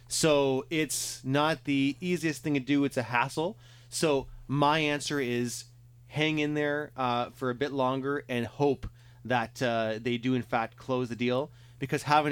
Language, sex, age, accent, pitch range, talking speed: English, male, 30-49, American, 115-130 Hz, 175 wpm